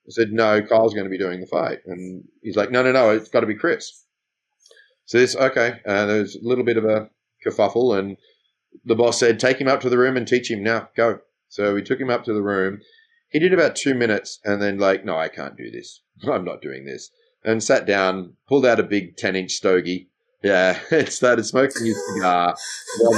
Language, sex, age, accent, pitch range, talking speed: English, male, 30-49, Australian, 105-160 Hz, 235 wpm